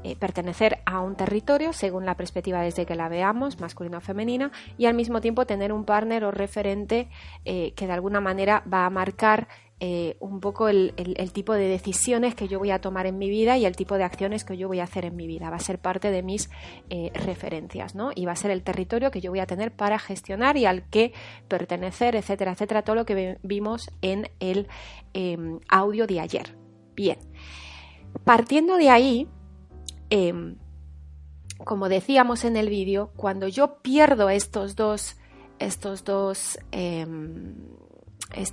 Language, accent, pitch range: Spanish, Spanish, 175-215 Hz